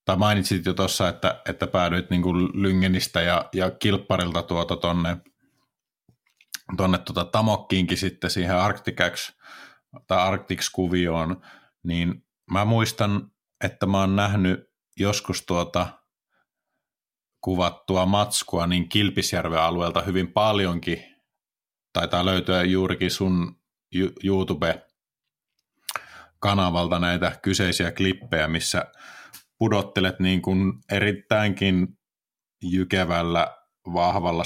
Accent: native